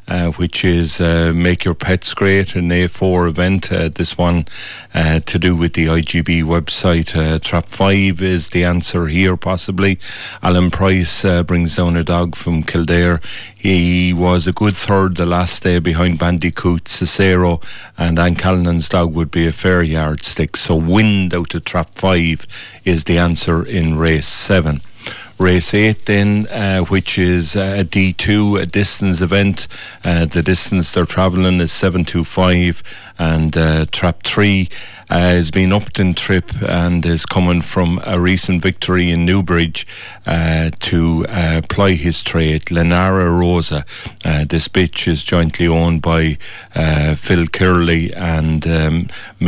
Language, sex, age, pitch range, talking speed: English, male, 40-59, 85-95 Hz, 155 wpm